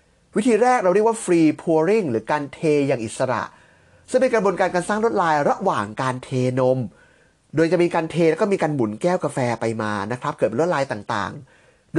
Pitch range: 140-205 Hz